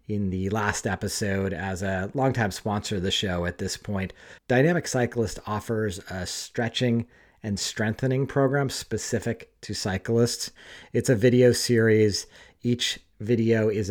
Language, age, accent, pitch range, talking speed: English, 40-59, American, 95-115 Hz, 140 wpm